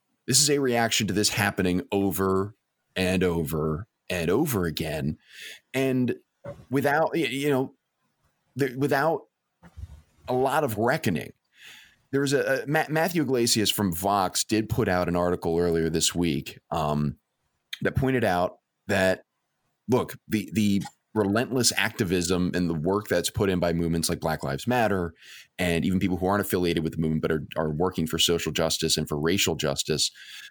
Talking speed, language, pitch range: 155 wpm, English, 85-115 Hz